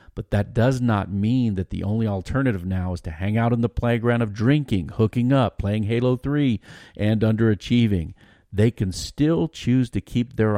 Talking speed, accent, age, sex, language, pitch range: 185 wpm, American, 50-69, male, English, 90-110 Hz